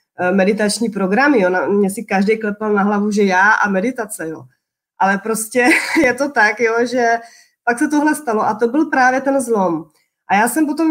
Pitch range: 200-245 Hz